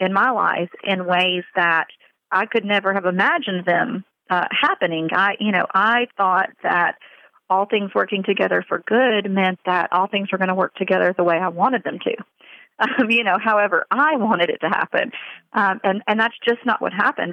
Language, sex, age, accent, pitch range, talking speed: English, female, 40-59, American, 185-230 Hz, 200 wpm